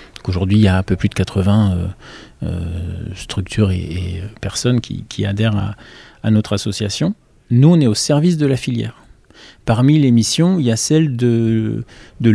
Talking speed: 190 wpm